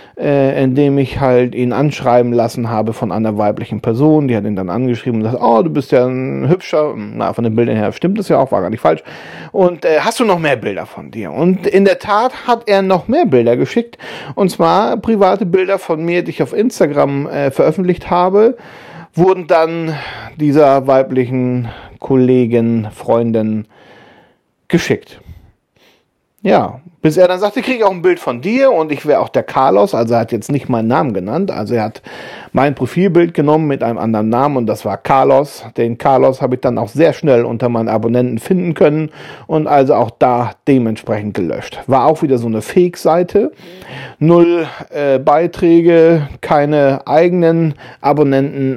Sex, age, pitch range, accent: male, 40-59, 115-170 Hz, German